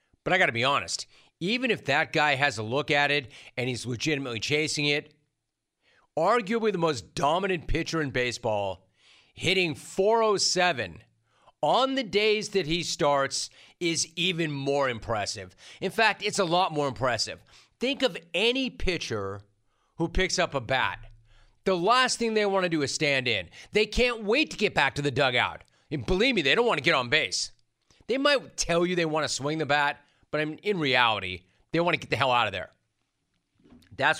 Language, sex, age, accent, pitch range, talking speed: English, male, 30-49, American, 125-170 Hz, 190 wpm